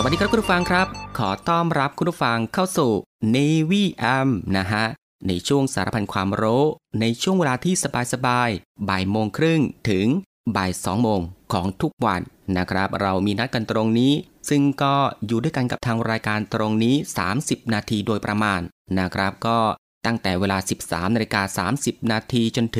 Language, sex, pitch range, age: Thai, male, 100-135 Hz, 20-39